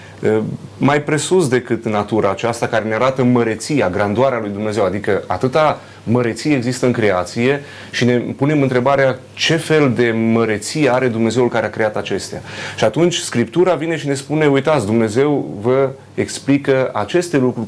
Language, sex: Romanian, male